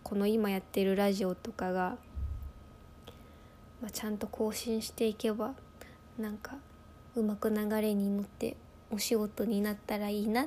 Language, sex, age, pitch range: Japanese, female, 20-39, 190-240 Hz